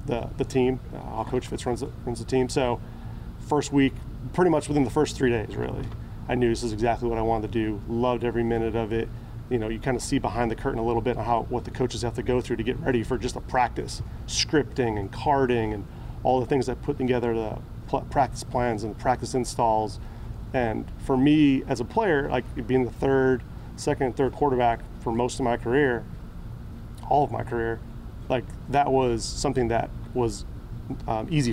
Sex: male